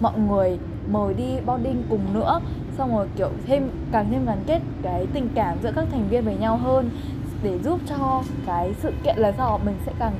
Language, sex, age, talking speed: Vietnamese, female, 10-29, 210 wpm